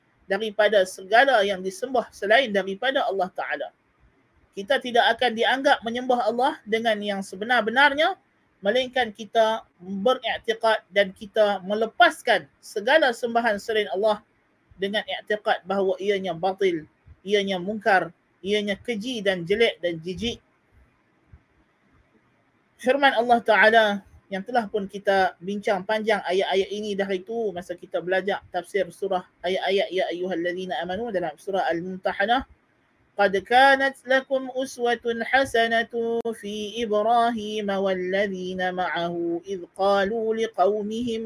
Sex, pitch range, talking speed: male, 190-240 Hz, 115 wpm